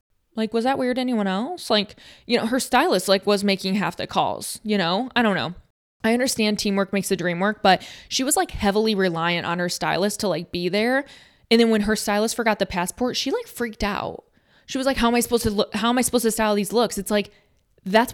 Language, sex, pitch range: English, female, 190-235 Hz